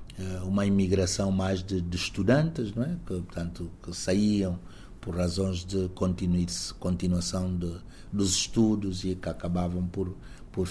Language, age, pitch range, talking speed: Portuguese, 60-79, 95-120 Hz, 130 wpm